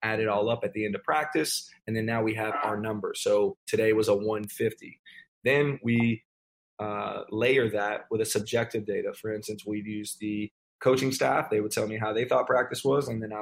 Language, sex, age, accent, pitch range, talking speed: English, male, 20-39, American, 105-130 Hz, 220 wpm